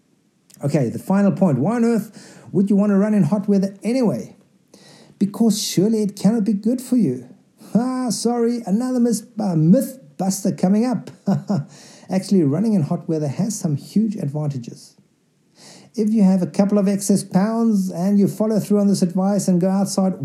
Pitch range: 140-200 Hz